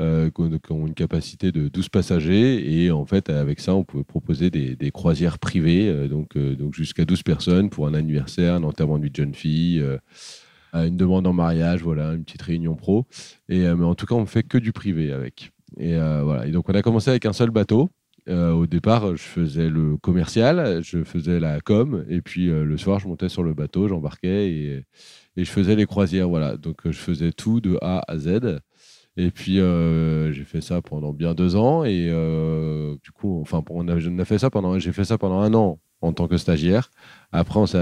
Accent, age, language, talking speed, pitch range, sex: French, 30-49, French, 230 wpm, 80-100 Hz, male